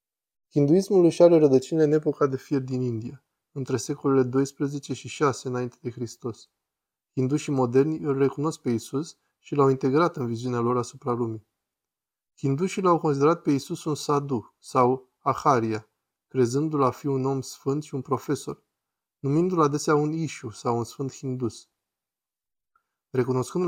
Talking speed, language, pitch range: 150 wpm, Romanian, 125-150 Hz